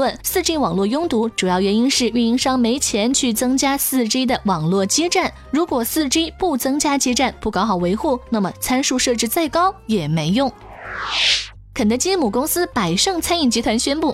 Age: 20-39